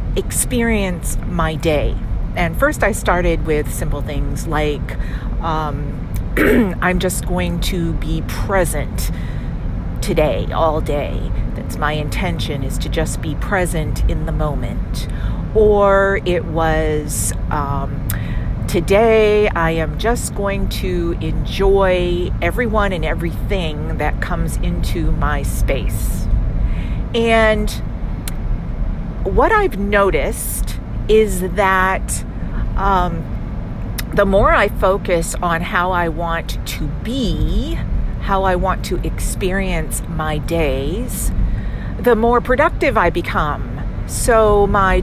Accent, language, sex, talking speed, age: American, English, female, 110 wpm, 40-59